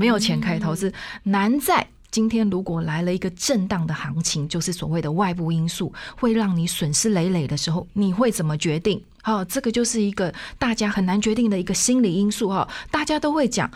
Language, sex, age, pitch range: Chinese, female, 20-39, 170-220 Hz